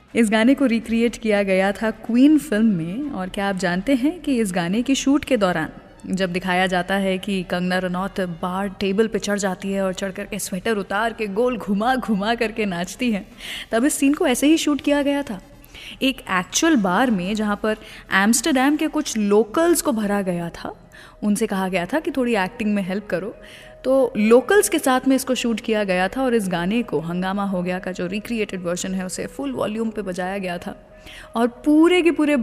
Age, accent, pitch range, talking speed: 20-39, Indian, 195-270 Hz, 180 wpm